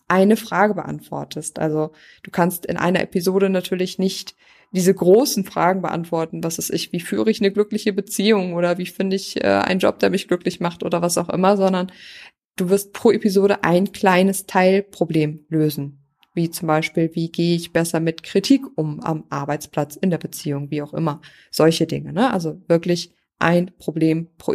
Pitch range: 165-200 Hz